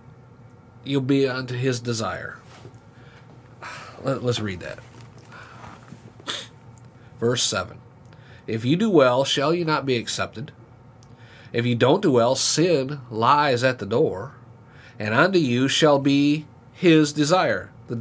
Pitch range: 125-155 Hz